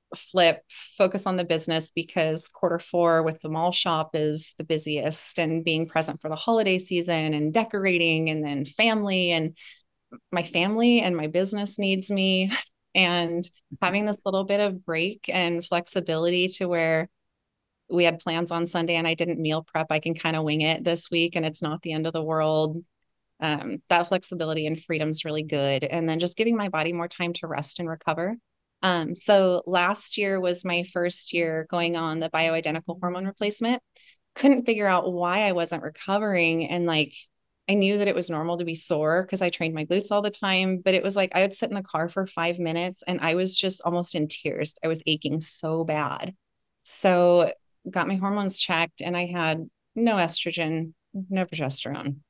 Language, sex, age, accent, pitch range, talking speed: English, female, 30-49, American, 160-190 Hz, 195 wpm